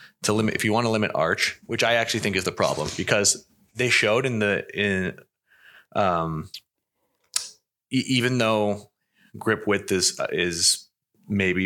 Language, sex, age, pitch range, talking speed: English, male, 30-49, 95-115 Hz, 150 wpm